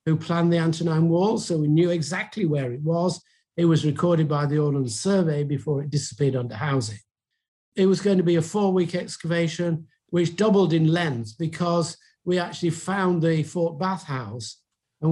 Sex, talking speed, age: male, 180 wpm, 50-69